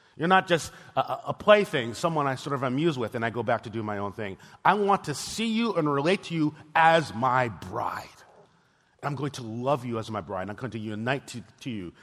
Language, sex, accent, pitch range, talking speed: English, male, American, 120-160 Hz, 240 wpm